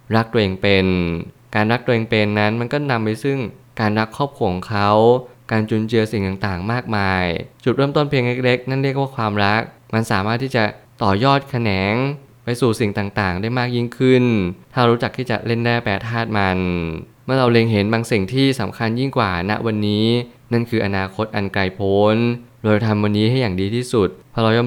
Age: 20-39